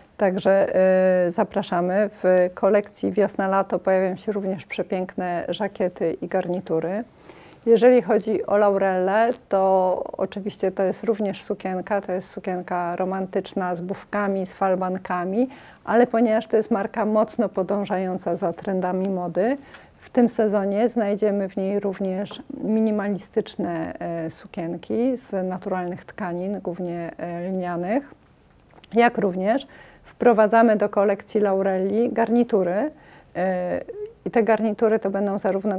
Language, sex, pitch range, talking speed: Polish, female, 185-220 Hz, 110 wpm